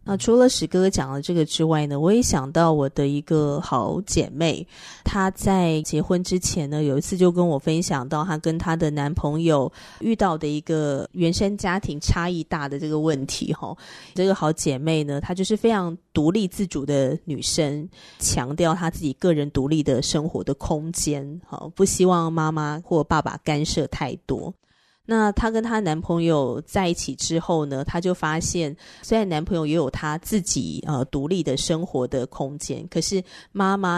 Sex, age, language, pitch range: female, 30-49, Chinese, 150-185 Hz